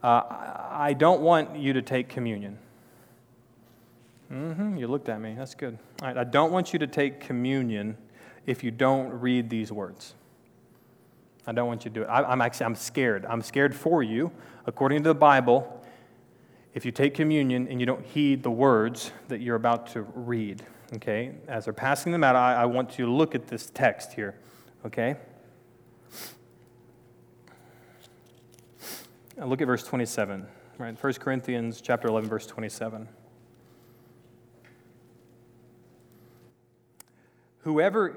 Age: 30-49